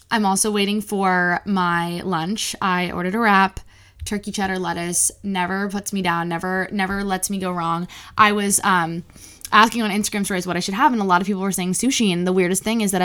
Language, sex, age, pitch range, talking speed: English, female, 20-39, 175-210 Hz, 220 wpm